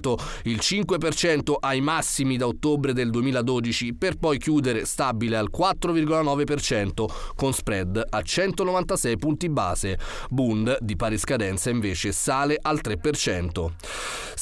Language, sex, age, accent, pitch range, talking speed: Italian, male, 30-49, native, 125-160 Hz, 115 wpm